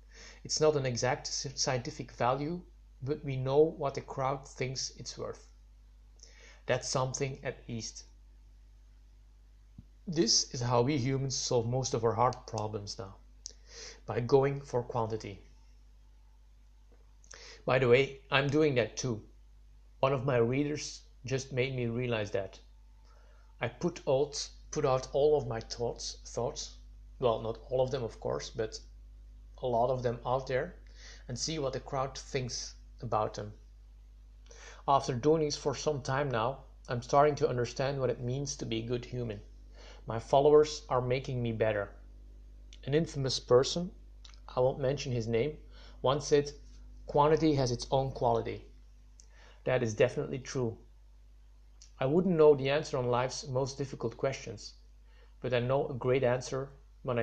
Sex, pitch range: male, 110-140 Hz